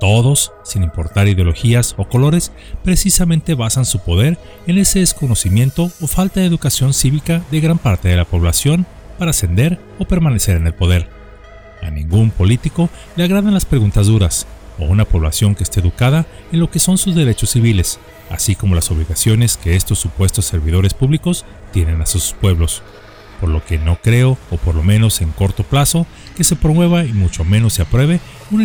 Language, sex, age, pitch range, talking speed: Spanish, male, 40-59, 90-140 Hz, 180 wpm